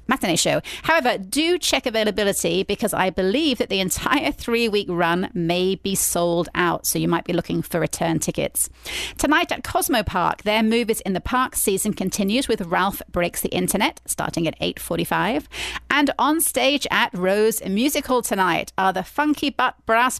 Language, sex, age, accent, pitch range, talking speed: English, female, 30-49, British, 185-255 Hz, 170 wpm